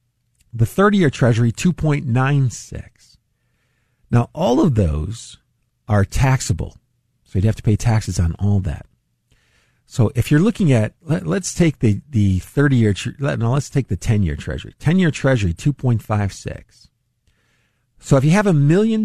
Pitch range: 105-135 Hz